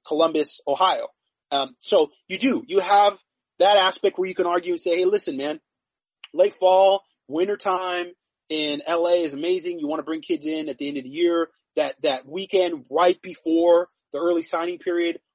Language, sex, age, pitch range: English, male, 30-49, 155-200 Hz